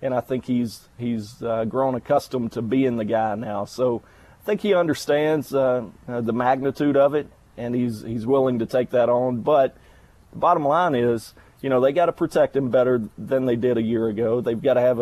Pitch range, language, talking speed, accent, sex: 120-140 Hz, English, 215 wpm, American, male